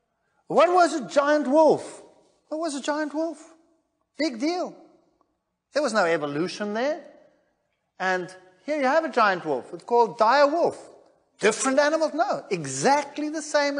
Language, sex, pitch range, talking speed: English, male, 180-290 Hz, 150 wpm